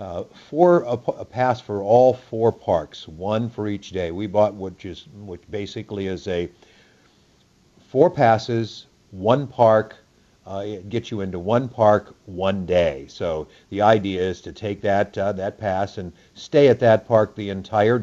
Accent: American